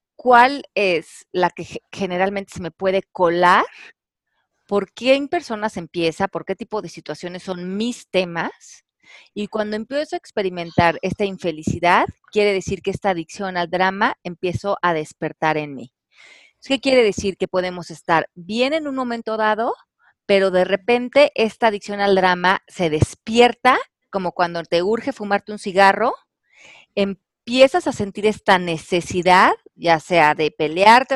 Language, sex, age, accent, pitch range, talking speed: Spanish, female, 30-49, Mexican, 175-225 Hz, 150 wpm